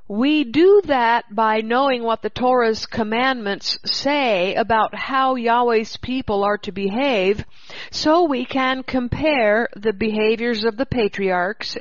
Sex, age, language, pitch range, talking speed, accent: female, 50-69, English, 205-255 Hz, 130 wpm, American